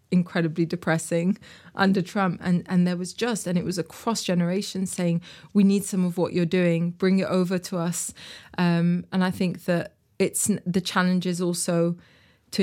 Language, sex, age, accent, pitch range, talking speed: English, female, 20-39, British, 170-180 Hz, 185 wpm